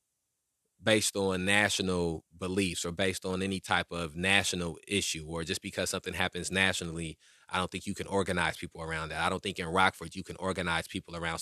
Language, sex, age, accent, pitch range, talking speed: English, male, 20-39, American, 85-95 Hz, 195 wpm